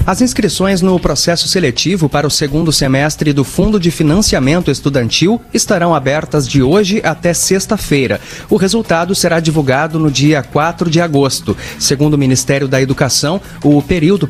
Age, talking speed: 30-49, 150 wpm